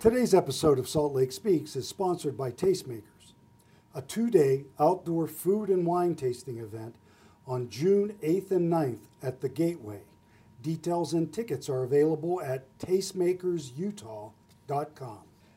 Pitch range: 125-170 Hz